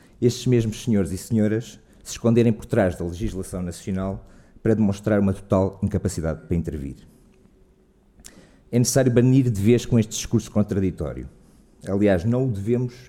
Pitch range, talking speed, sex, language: 100-125 Hz, 145 wpm, male, Portuguese